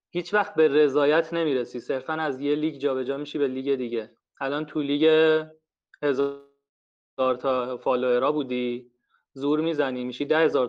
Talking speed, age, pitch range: 145 wpm, 30-49, 130-155 Hz